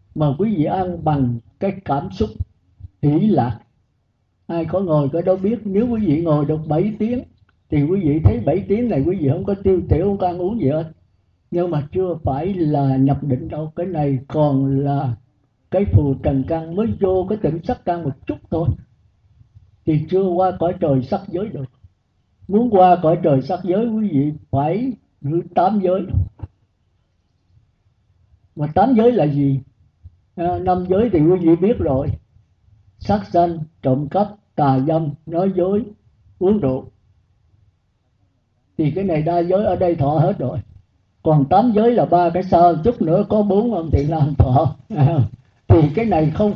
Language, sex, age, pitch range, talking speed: Vietnamese, male, 60-79, 110-180 Hz, 180 wpm